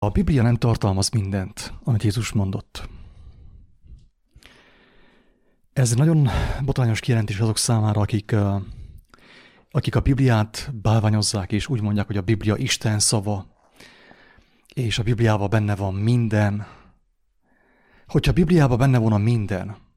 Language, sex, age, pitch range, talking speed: English, male, 30-49, 105-130 Hz, 125 wpm